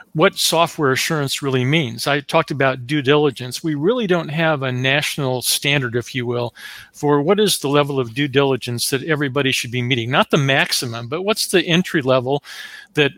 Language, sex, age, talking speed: English, male, 40-59, 190 wpm